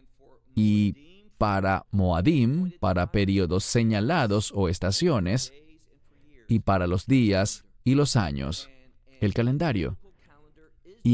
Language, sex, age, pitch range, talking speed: English, male, 30-49, 100-135 Hz, 95 wpm